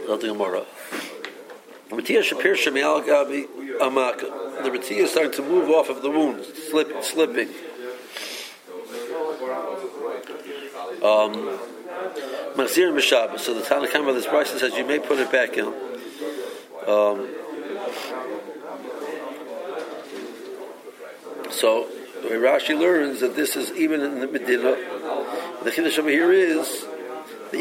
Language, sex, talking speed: English, male, 85 wpm